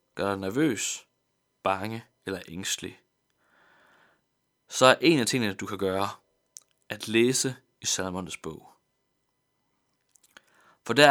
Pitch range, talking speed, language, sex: 105-130 Hz, 115 wpm, Danish, male